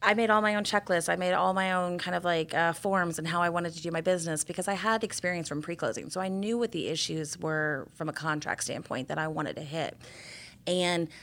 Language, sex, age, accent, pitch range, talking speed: English, female, 30-49, American, 160-200 Hz, 250 wpm